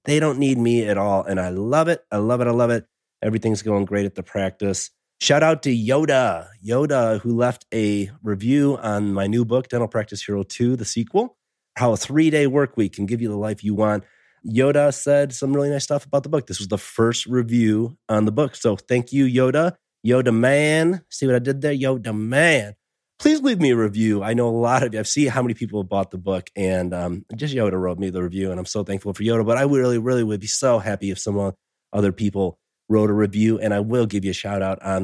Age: 30-49